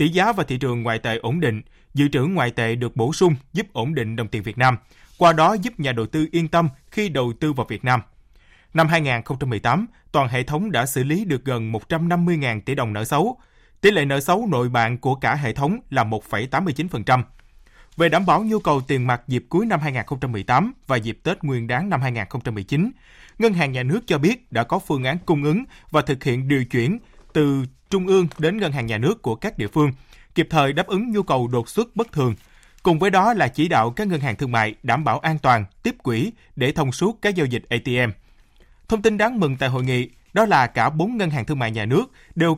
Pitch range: 125-175 Hz